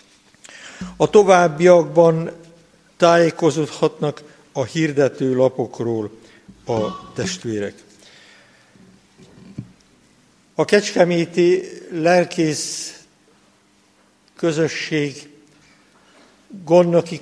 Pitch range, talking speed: 145-175 Hz, 45 wpm